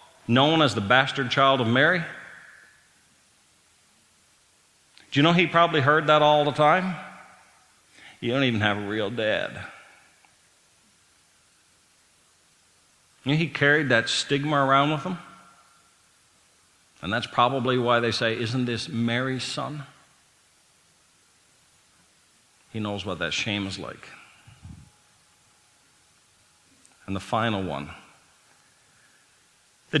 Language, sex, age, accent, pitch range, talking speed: English, male, 50-69, American, 120-155 Hz, 110 wpm